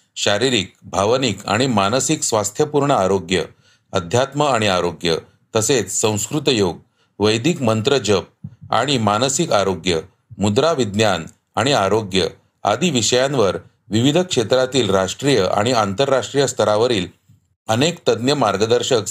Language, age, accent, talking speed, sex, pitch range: Marathi, 40-59, native, 105 wpm, male, 100-140 Hz